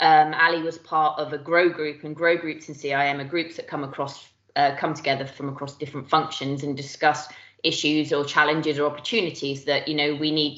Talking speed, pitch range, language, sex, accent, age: 210 wpm, 140-160 Hz, English, female, British, 20-39